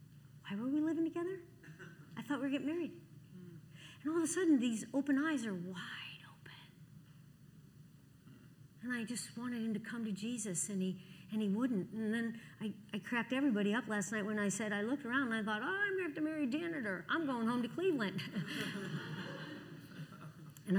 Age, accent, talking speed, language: 50-69, American, 195 wpm, English